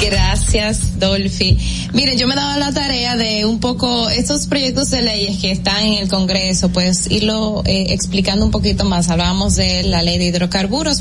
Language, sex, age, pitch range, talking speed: Spanish, female, 20-39, 175-220 Hz, 180 wpm